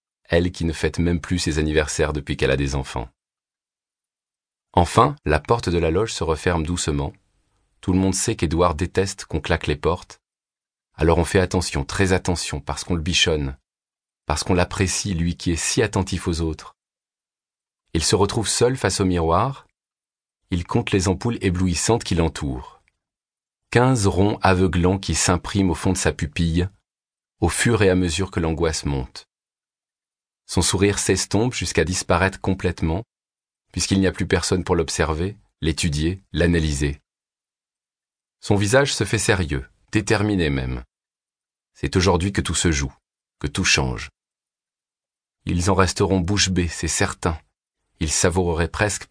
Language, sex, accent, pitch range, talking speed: French, male, French, 80-95 Hz, 155 wpm